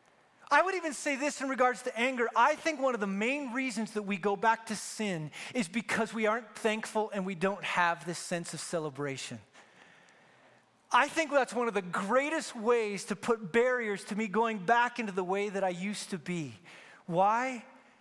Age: 30-49